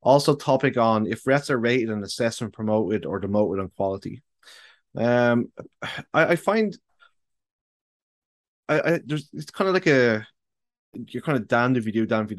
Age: 20-39